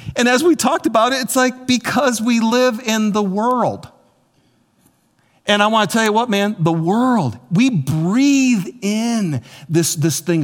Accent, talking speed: American, 170 wpm